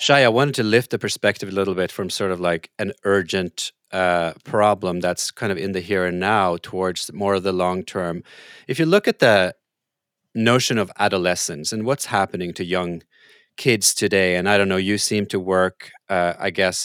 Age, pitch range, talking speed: 30-49, 95-110 Hz, 205 wpm